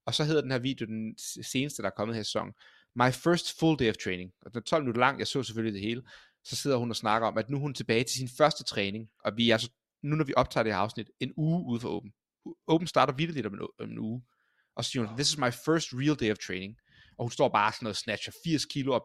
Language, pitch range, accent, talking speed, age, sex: Danish, 115-150 Hz, native, 285 wpm, 30-49, male